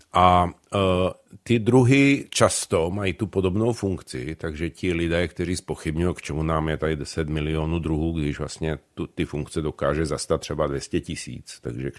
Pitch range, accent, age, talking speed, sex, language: 85-110 Hz, native, 50-69, 160 wpm, male, Czech